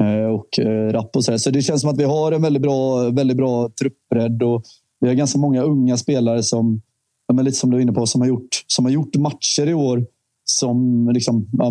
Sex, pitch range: male, 115-125 Hz